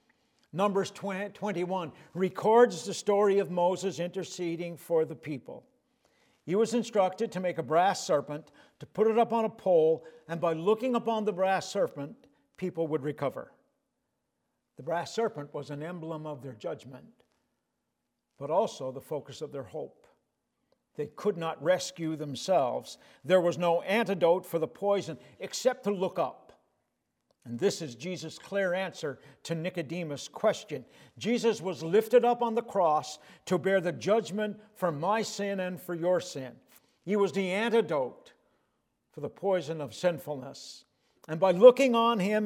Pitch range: 155-200 Hz